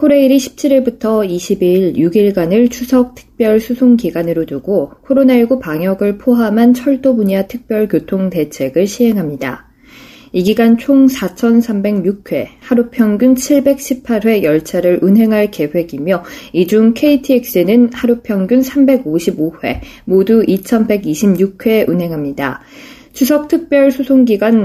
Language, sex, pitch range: Korean, female, 185-250 Hz